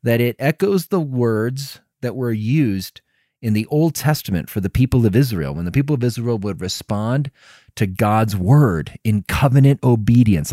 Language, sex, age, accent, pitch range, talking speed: English, male, 30-49, American, 110-145 Hz, 170 wpm